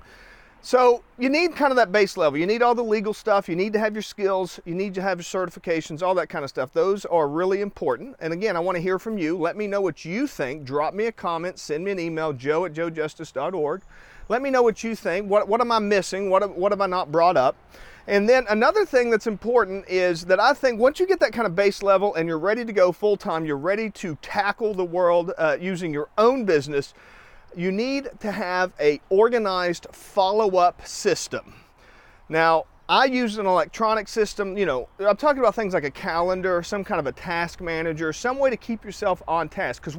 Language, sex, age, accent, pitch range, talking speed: English, male, 40-59, American, 180-235 Hz, 225 wpm